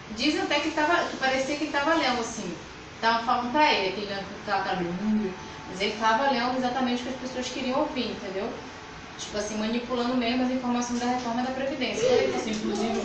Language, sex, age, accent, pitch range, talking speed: Portuguese, female, 10-29, Brazilian, 220-270 Hz, 215 wpm